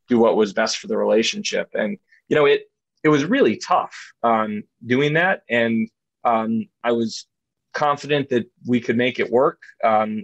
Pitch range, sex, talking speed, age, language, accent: 110-130 Hz, male, 175 wpm, 20-39, English, American